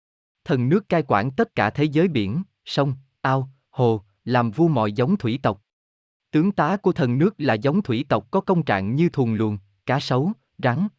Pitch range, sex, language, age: 110-160 Hz, male, Vietnamese, 20-39